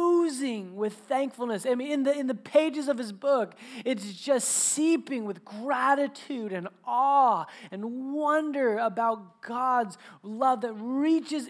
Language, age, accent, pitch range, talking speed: English, 20-39, American, 210-265 Hz, 135 wpm